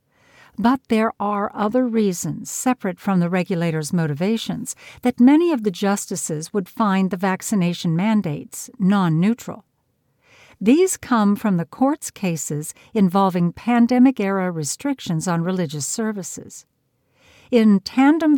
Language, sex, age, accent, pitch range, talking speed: English, female, 60-79, American, 175-245 Hz, 115 wpm